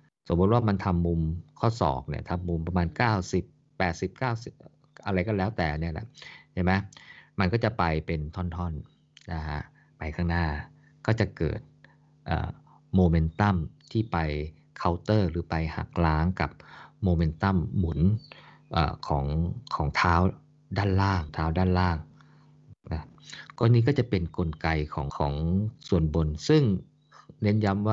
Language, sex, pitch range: Thai, male, 80-110 Hz